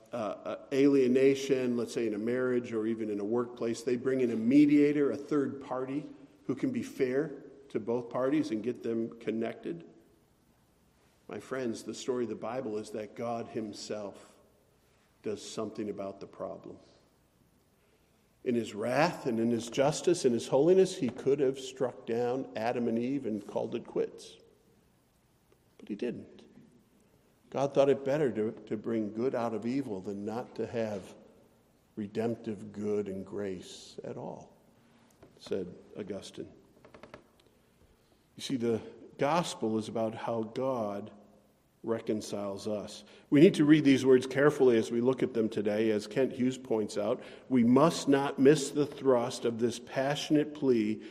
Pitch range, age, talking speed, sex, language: 110-140 Hz, 50-69, 155 wpm, male, English